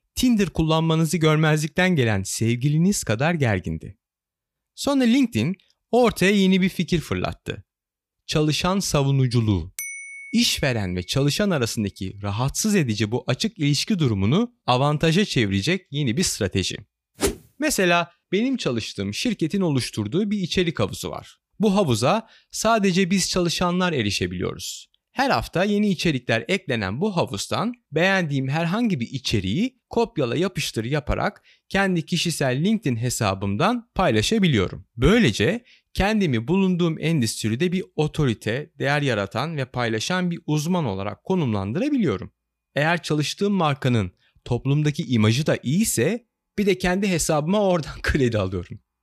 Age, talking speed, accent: 30-49, 115 wpm, native